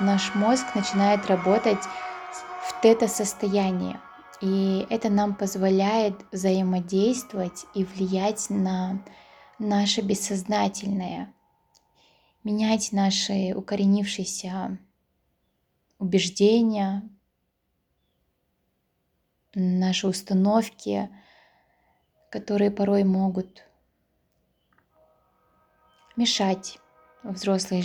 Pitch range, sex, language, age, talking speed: 185-215 Hz, female, Russian, 20-39, 60 wpm